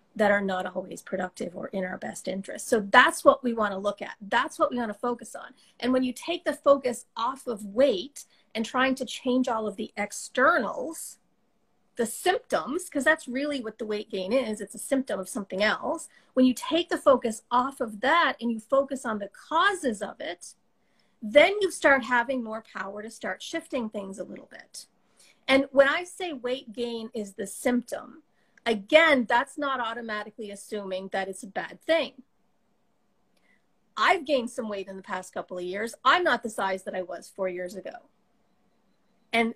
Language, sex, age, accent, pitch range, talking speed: English, female, 40-59, American, 215-275 Hz, 190 wpm